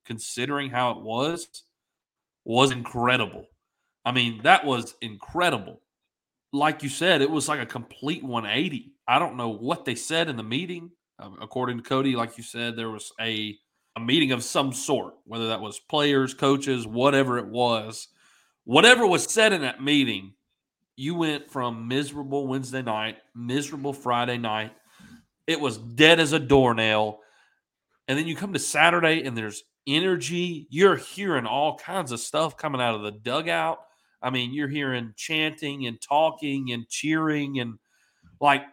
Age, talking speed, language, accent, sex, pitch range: 30-49, 160 wpm, English, American, male, 120-160 Hz